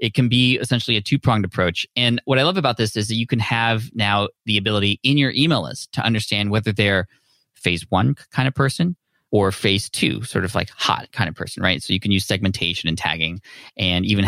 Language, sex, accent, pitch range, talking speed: English, male, American, 95-115 Hz, 225 wpm